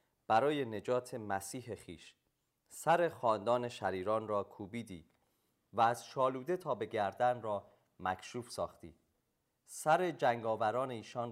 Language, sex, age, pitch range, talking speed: Persian, male, 30-49, 105-135 Hz, 110 wpm